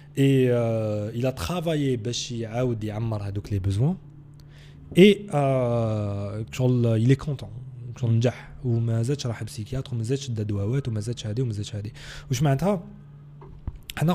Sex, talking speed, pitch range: male, 125 wpm, 115-145 Hz